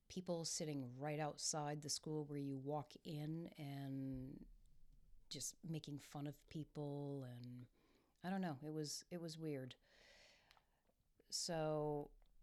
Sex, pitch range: female, 145-175 Hz